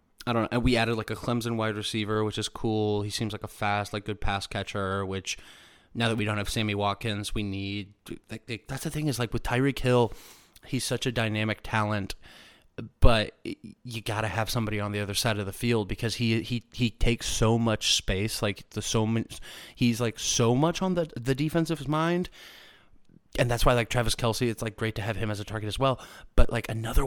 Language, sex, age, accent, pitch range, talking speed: English, male, 20-39, American, 105-120 Hz, 225 wpm